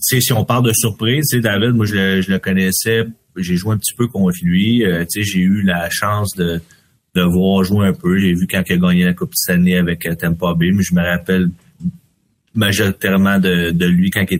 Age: 30-49